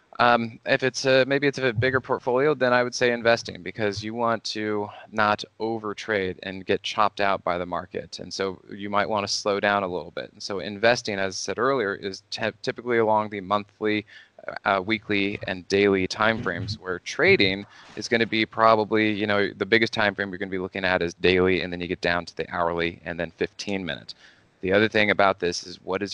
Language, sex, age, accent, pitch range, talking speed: English, male, 20-39, American, 95-115 Hz, 225 wpm